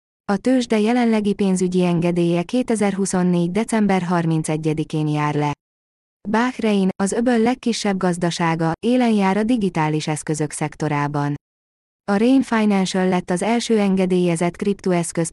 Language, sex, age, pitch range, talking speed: Hungarian, female, 20-39, 165-205 Hz, 115 wpm